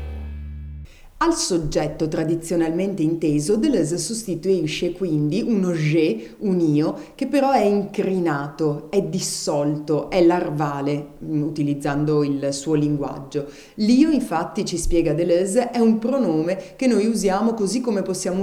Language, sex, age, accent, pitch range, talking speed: Italian, female, 30-49, native, 155-205 Hz, 120 wpm